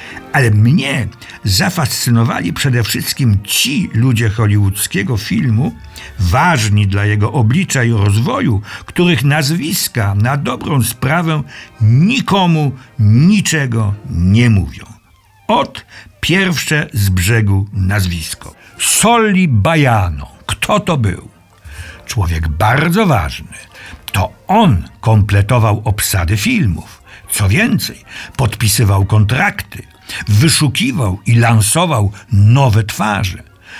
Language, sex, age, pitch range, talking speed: Polish, male, 60-79, 100-135 Hz, 90 wpm